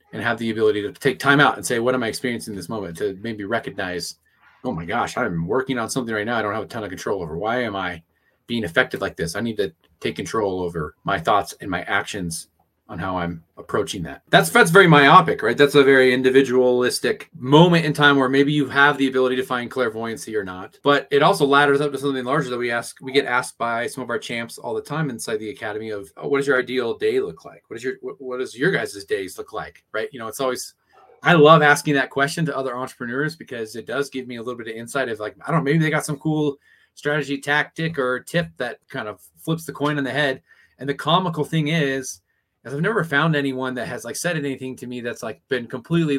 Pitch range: 115-145 Hz